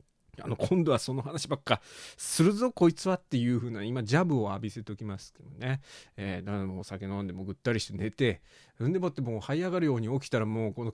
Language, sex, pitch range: Japanese, male, 110-160 Hz